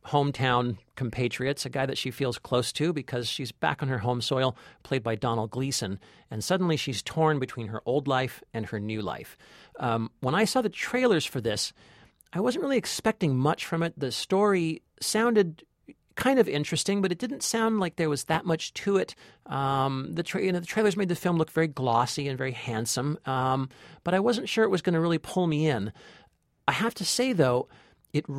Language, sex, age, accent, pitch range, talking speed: English, male, 40-59, American, 125-165 Hz, 205 wpm